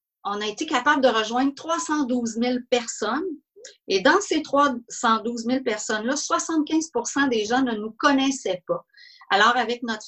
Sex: female